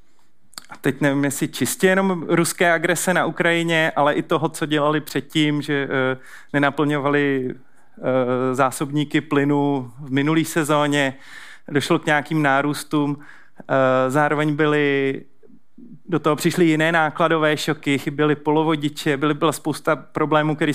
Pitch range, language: 145-165 Hz, Czech